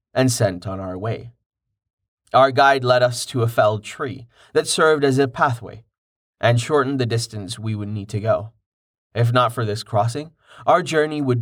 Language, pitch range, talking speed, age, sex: English, 110-135 Hz, 185 wpm, 20-39, male